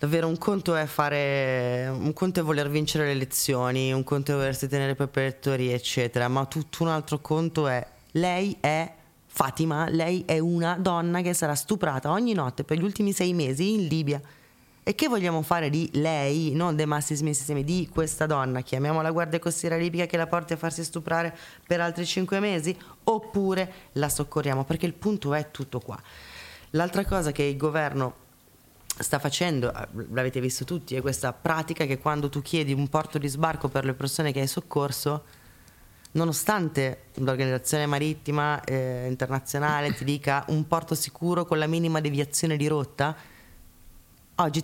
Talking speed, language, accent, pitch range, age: 170 wpm, Italian, native, 135-165 Hz, 20-39